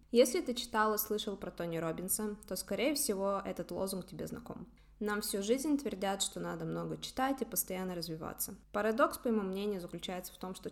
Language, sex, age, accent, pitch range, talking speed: Russian, female, 20-39, native, 175-225 Hz, 190 wpm